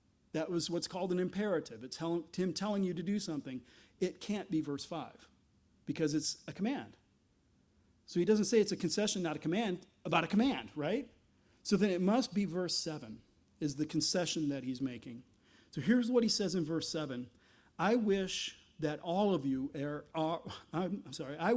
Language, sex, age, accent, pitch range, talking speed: English, male, 40-59, American, 155-210 Hz, 160 wpm